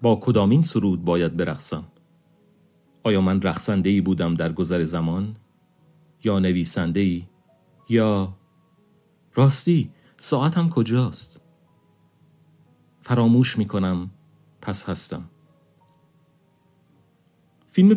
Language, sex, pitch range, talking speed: Persian, male, 95-125 Hz, 85 wpm